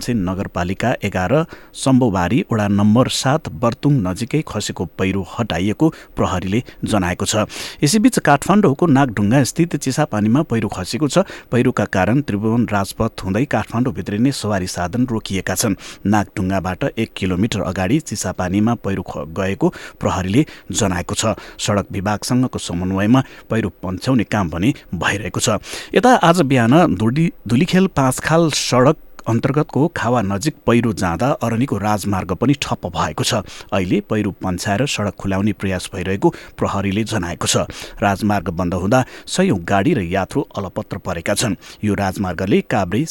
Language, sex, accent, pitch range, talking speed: English, male, Indian, 95-130 Hz, 110 wpm